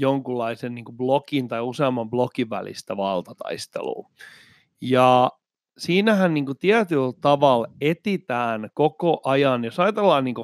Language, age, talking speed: Finnish, 30-49, 90 wpm